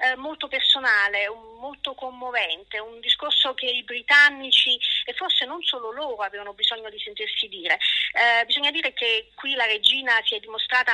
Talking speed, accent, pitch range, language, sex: 160 wpm, native, 220-280 Hz, Italian, female